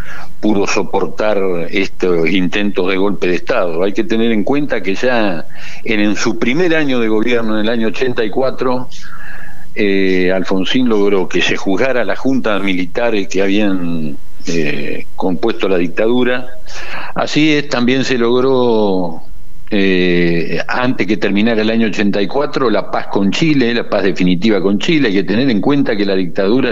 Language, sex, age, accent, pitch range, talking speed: Spanish, male, 60-79, Argentinian, 95-115 Hz, 155 wpm